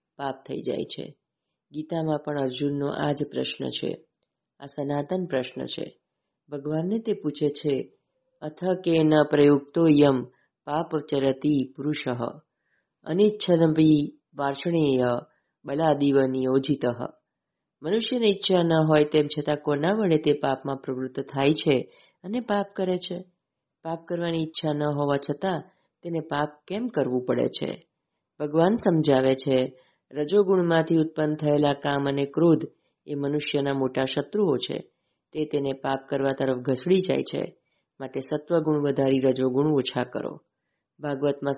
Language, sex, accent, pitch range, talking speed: Gujarati, female, native, 135-160 Hz, 105 wpm